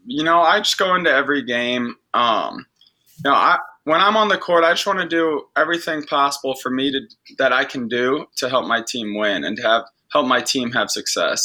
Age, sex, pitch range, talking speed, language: 20-39, male, 125-145 Hz, 230 wpm, English